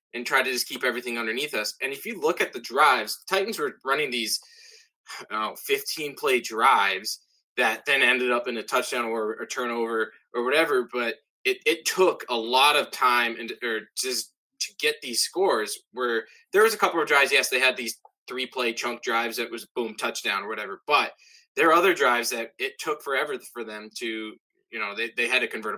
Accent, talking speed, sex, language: American, 210 wpm, male, English